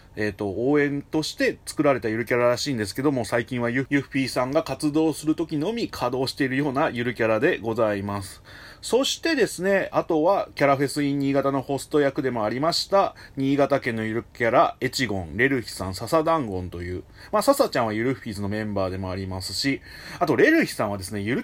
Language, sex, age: Japanese, male, 30-49